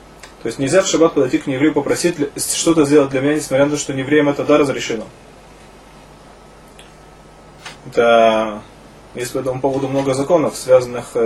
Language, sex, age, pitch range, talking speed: Russian, male, 20-39, 130-155 Hz, 155 wpm